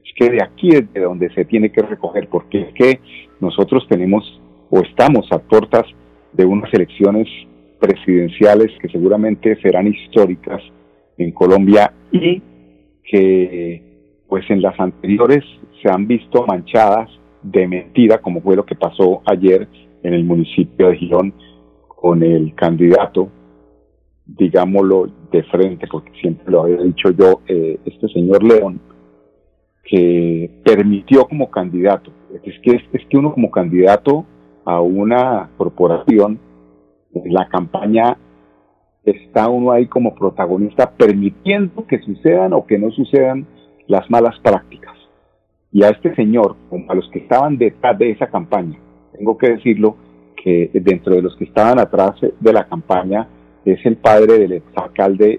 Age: 40-59